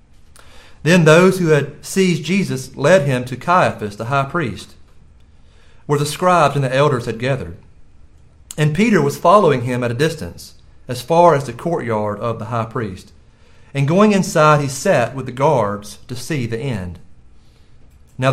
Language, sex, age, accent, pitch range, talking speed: English, male, 40-59, American, 110-165 Hz, 165 wpm